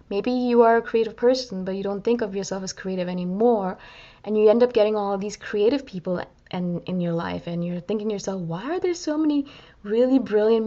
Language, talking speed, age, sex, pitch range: English, 225 wpm, 20-39, female, 175-210 Hz